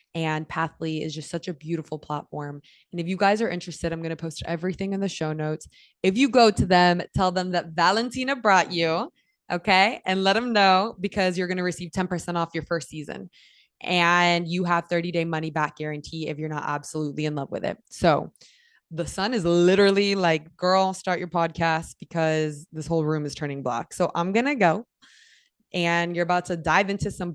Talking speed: 205 wpm